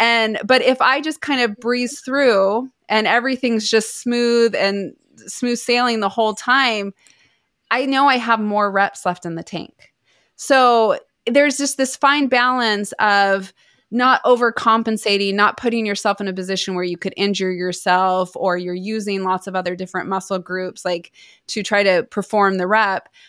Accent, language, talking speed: American, English, 165 wpm